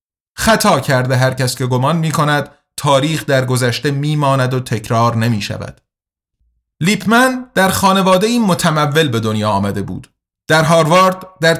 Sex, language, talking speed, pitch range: male, Persian, 140 wpm, 130-175 Hz